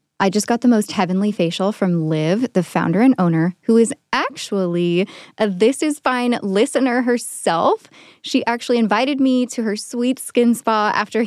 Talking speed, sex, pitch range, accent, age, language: 170 wpm, female, 175-235 Hz, American, 10-29, English